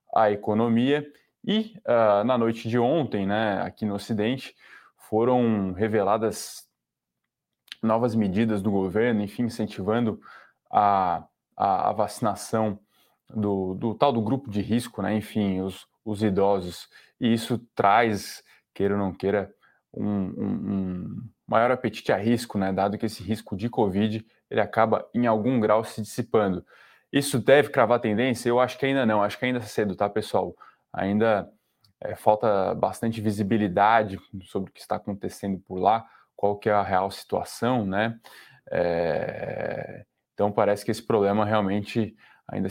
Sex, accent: male, Brazilian